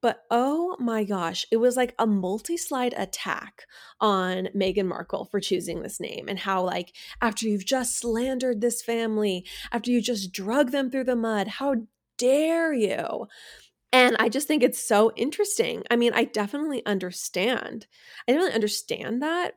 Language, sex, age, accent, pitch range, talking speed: English, female, 20-39, American, 190-255 Hz, 165 wpm